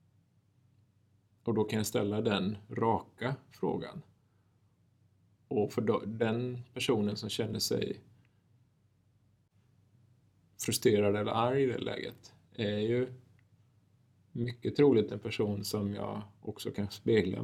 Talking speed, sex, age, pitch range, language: 115 wpm, male, 30-49, 100-120 Hz, Swedish